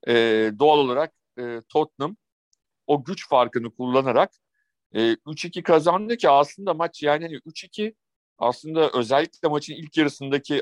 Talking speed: 130 wpm